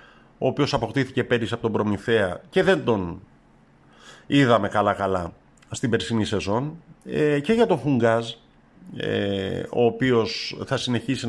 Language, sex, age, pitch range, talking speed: Greek, male, 50-69, 100-150 Hz, 120 wpm